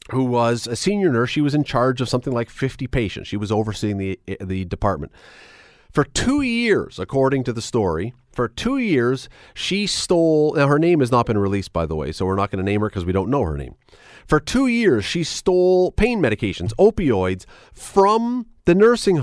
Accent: American